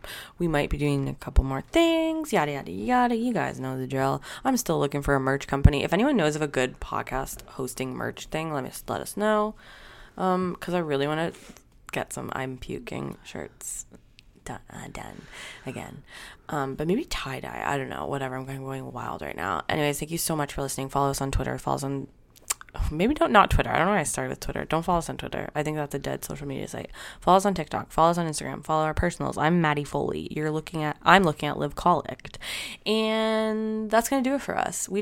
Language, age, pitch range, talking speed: English, 20-39, 135-190 Hz, 235 wpm